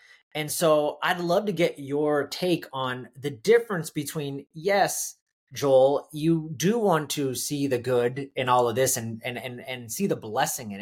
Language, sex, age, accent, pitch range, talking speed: English, male, 30-49, American, 130-175 Hz, 185 wpm